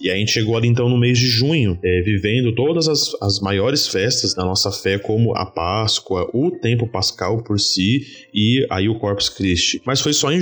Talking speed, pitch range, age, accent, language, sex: 205 wpm, 105-135 Hz, 20-39, Brazilian, Portuguese, male